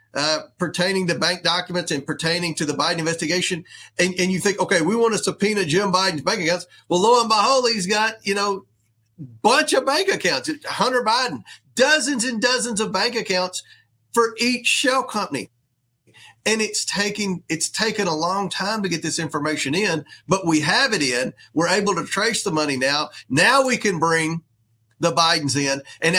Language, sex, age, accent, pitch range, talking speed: English, male, 40-59, American, 160-220 Hz, 185 wpm